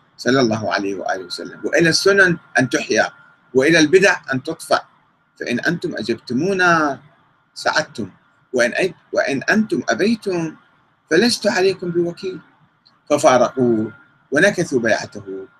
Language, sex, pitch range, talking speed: Arabic, male, 125-205 Hz, 105 wpm